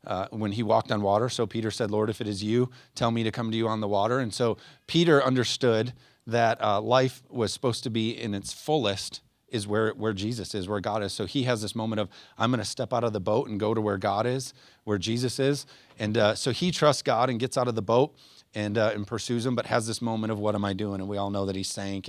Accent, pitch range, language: American, 105-130 Hz, English